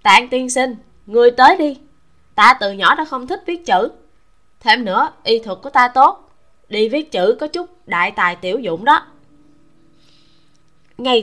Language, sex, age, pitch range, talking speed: Vietnamese, female, 20-39, 195-265 Hz, 170 wpm